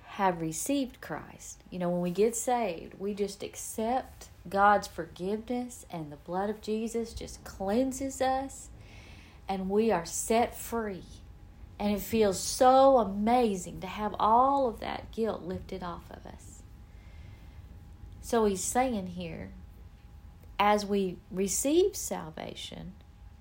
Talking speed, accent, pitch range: 130 wpm, American, 160-225 Hz